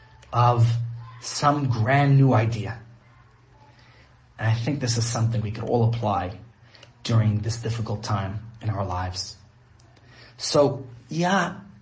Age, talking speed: 30-49, 120 wpm